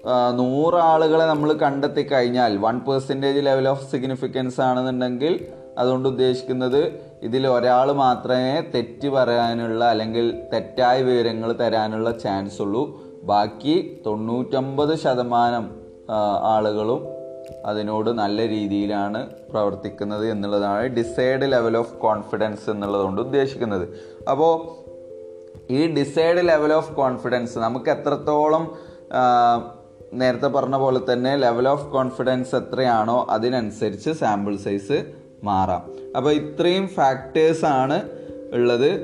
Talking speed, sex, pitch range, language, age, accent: 95 wpm, male, 115-145 Hz, Malayalam, 20-39, native